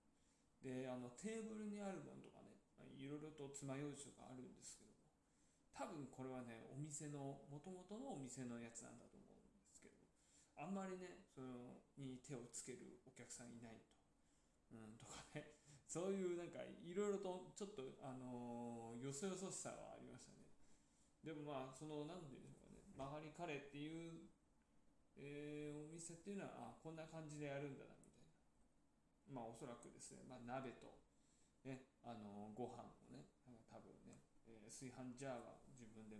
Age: 20-39